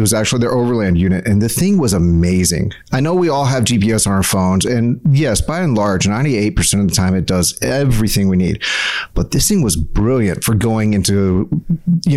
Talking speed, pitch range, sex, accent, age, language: 210 wpm, 95-125 Hz, male, American, 40-59, English